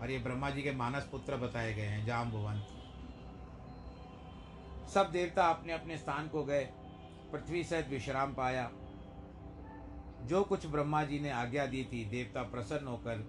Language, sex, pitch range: Hindi, male, 105-150 Hz